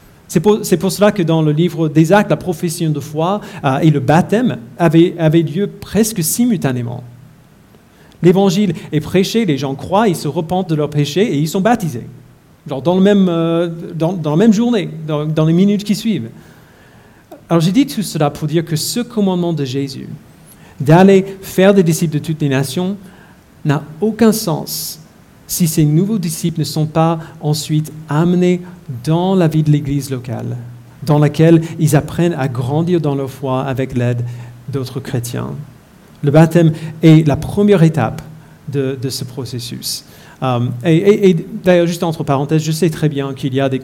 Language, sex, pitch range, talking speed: French, male, 135-175 Hz, 180 wpm